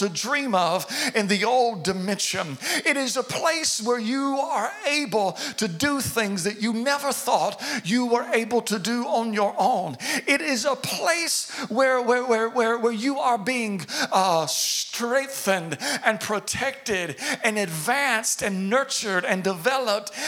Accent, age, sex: American, 50-69, male